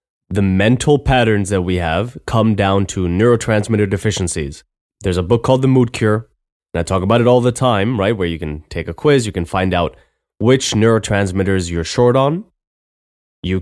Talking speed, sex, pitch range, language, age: 190 wpm, male, 90-115 Hz, English, 20-39